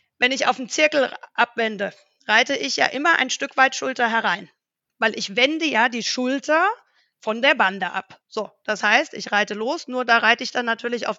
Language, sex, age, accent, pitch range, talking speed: German, female, 40-59, German, 215-275 Hz, 205 wpm